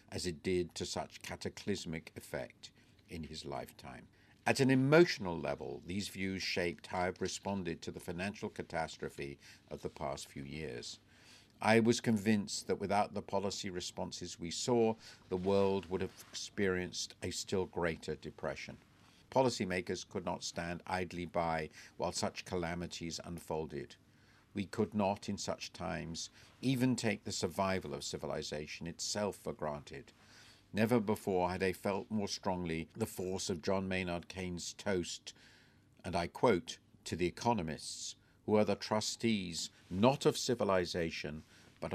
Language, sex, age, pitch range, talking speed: English, male, 50-69, 85-110 Hz, 145 wpm